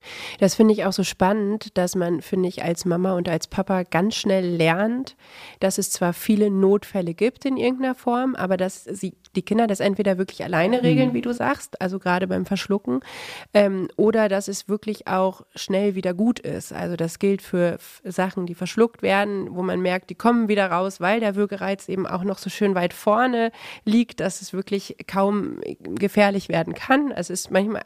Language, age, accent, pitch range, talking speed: German, 30-49, German, 185-220 Hz, 195 wpm